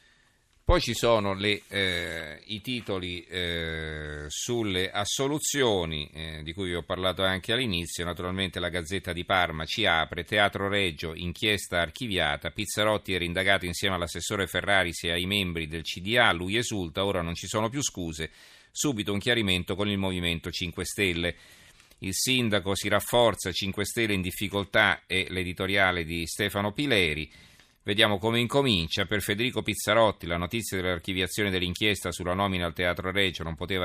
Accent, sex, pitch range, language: native, male, 85-105 Hz, Italian